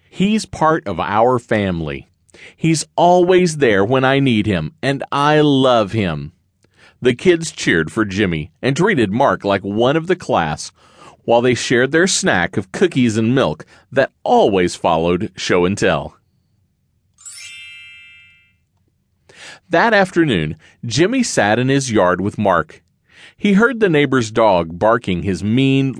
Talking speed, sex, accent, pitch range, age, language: 135 wpm, male, American, 95-145 Hz, 40-59, English